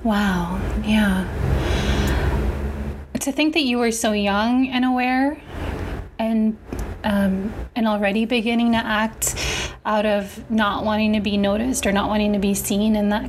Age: 20-39